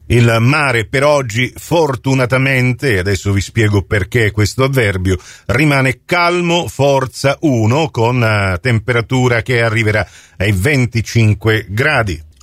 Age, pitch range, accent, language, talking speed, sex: 40-59, 110-130 Hz, native, Italian, 110 wpm, male